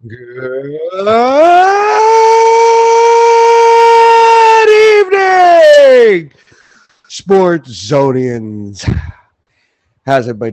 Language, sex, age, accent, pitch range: English, male, 30-49, American, 115-155 Hz